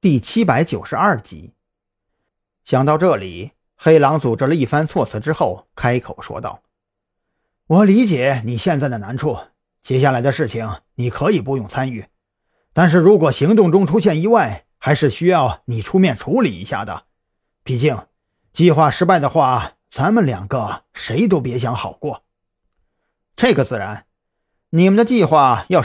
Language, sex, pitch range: Chinese, male, 115-170 Hz